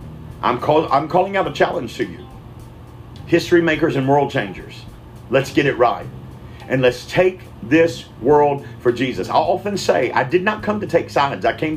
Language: English